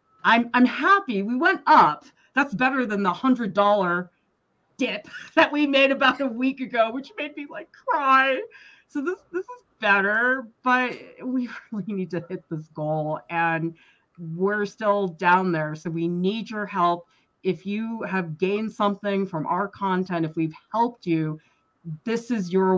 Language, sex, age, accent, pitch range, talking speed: English, female, 30-49, American, 165-250 Hz, 165 wpm